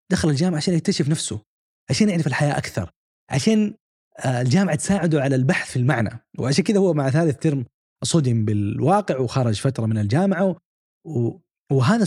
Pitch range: 125-185 Hz